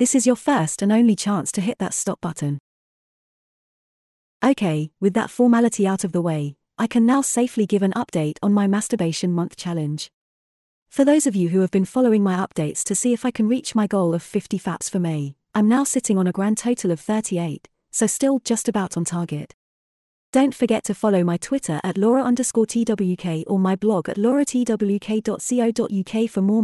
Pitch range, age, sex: 175-235 Hz, 30-49, female